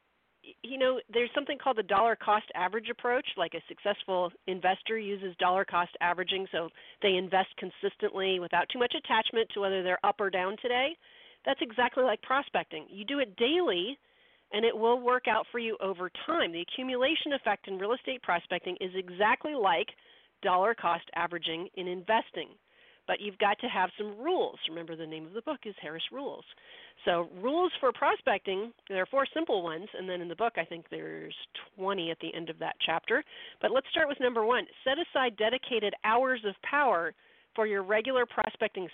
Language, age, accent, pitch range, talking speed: English, 40-59, American, 185-250 Hz, 185 wpm